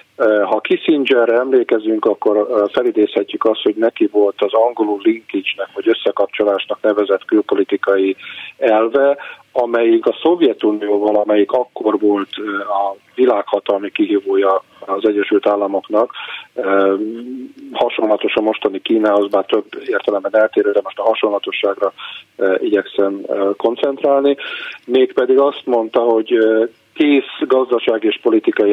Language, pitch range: Hungarian, 100-140 Hz